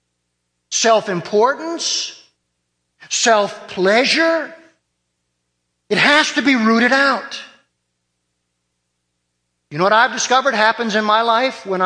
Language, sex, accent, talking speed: English, male, American, 100 wpm